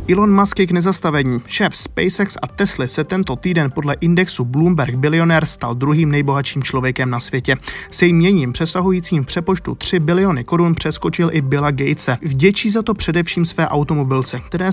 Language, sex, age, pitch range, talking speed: Czech, male, 20-39, 135-175 Hz, 155 wpm